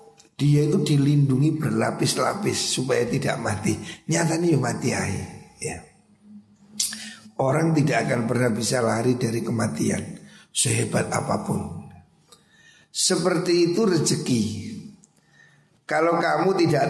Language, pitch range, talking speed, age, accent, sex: Indonesian, 115-165 Hz, 95 wpm, 50-69, native, male